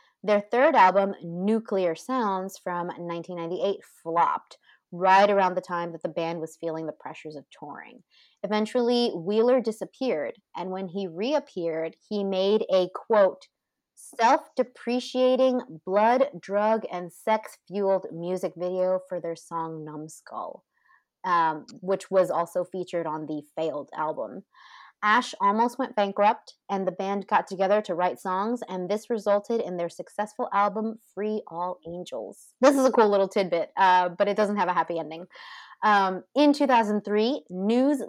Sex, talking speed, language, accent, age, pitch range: female, 145 wpm, English, American, 30-49, 180-230 Hz